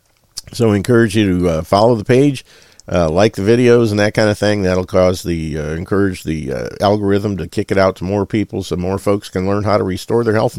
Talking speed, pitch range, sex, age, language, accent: 250 wpm, 90-110 Hz, male, 50-69, English, American